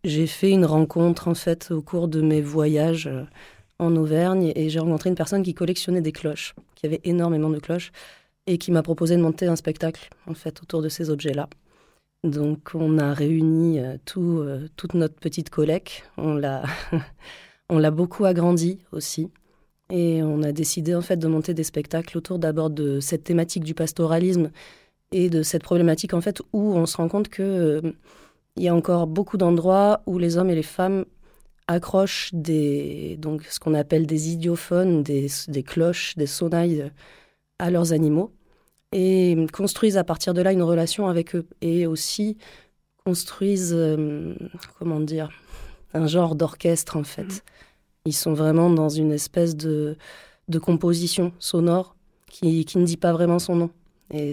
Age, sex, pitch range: 20-39, female, 155-175 Hz